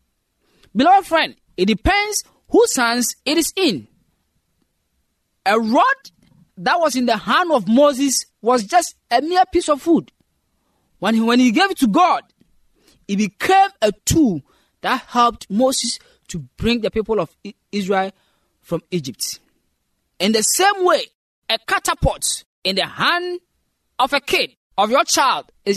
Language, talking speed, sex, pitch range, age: English, 150 wpm, male, 215-350 Hz, 20-39